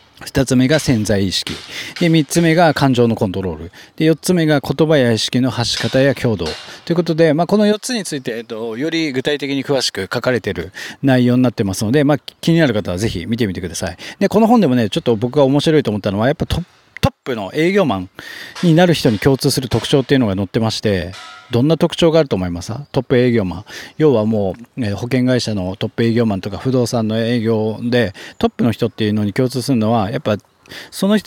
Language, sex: Japanese, male